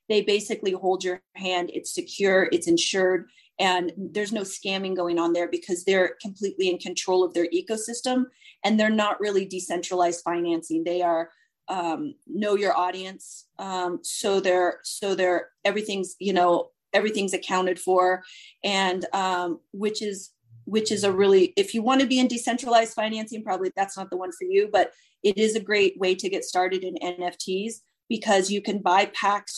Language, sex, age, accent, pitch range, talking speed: English, female, 30-49, American, 185-225 Hz, 175 wpm